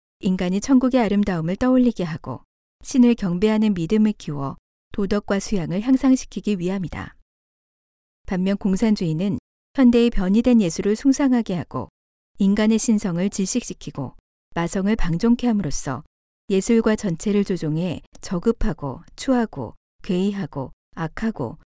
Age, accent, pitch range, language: 40-59, native, 175-230 Hz, Korean